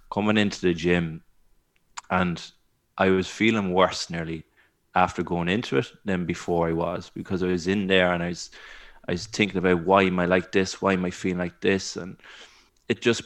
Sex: male